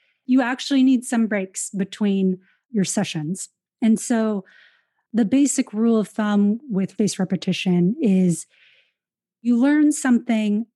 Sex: female